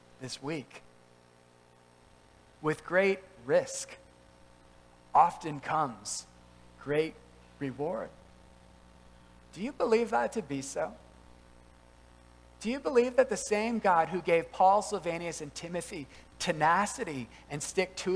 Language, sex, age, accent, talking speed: English, male, 40-59, American, 110 wpm